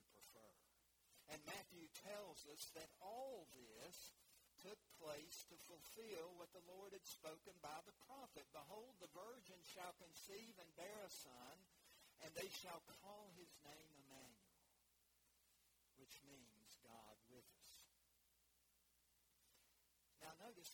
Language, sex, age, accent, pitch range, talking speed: English, male, 60-79, American, 145-205 Hz, 120 wpm